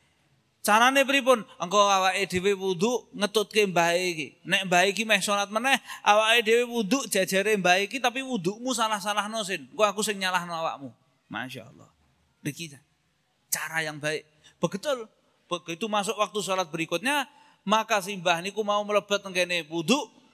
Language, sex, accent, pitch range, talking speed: Indonesian, male, native, 175-225 Hz, 140 wpm